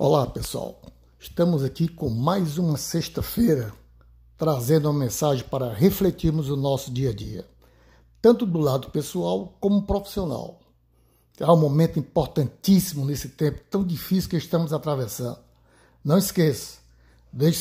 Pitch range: 125-175 Hz